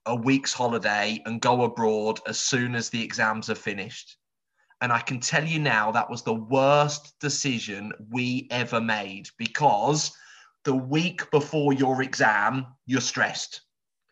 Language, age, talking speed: English, 20-39, 150 wpm